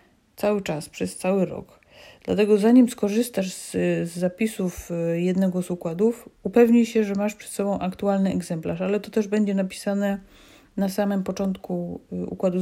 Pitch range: 175-210 Hz